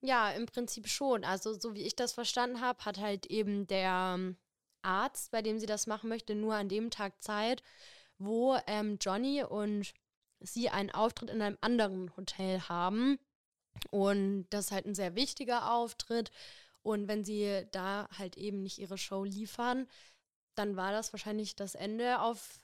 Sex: female